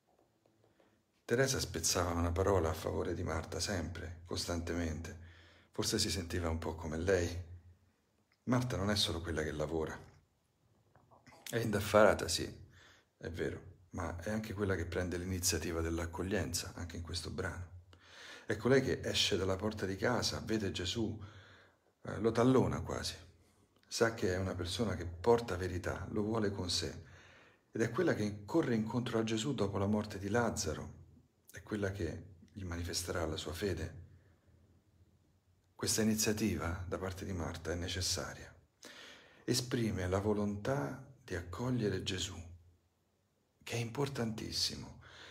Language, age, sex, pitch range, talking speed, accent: Italian, 40-59, male, 85-110 Hz, 140 wpm, native